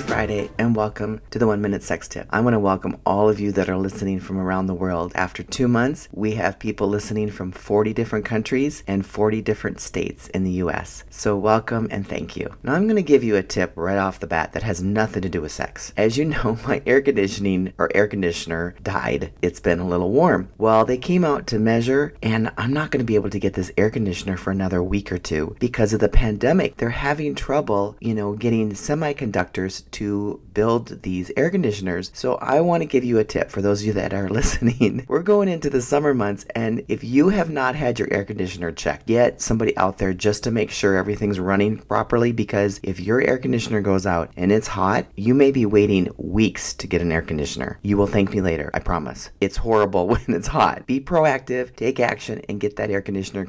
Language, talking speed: English, 225 wpm